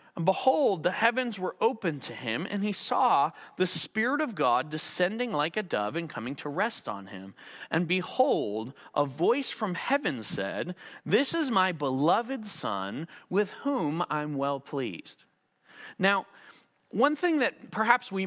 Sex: male